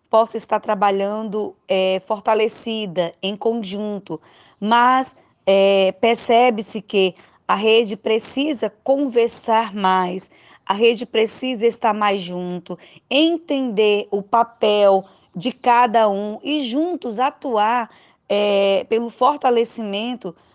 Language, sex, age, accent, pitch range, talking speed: Portuguese, female, 10-29, Brazilian, 195-235 Hz, 90 wpm